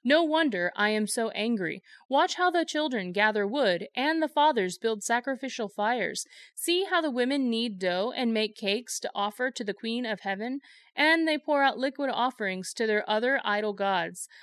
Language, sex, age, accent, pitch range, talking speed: English, female, 30-49, American, 215-290 Hz, 185 wpm